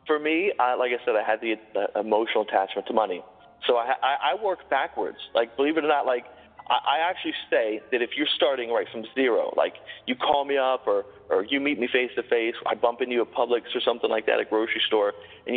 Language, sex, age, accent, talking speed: English, male, 40-59, American, 245 wpm